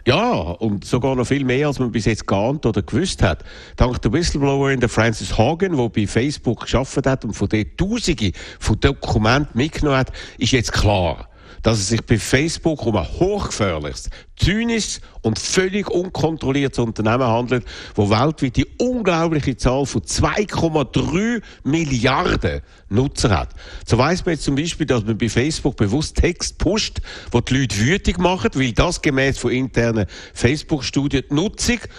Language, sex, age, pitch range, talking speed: German, male, 60-79, 105-145 Hz, 160 wpm